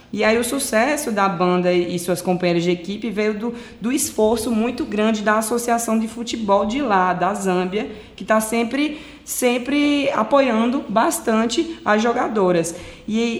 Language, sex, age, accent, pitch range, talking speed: Portuguese, female, 20-39, Brazilian, 180-225 Hz, 150 wpm